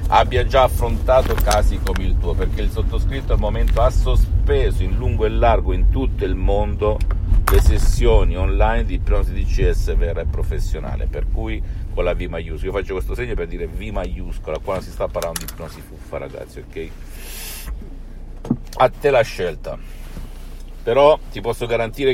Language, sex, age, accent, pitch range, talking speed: Italian, male, 50-69, native, 80-105 Hz, 170 wpm